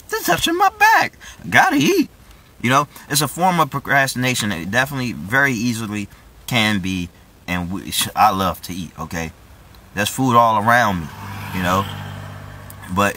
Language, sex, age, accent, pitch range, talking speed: English, male, 20-39, American, 100-140 Hz, 155 wpm